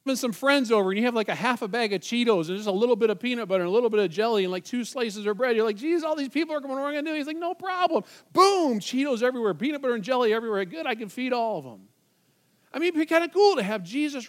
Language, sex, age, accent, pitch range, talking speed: English, male, 40-59, American, 180-255 Hz, 310 wpm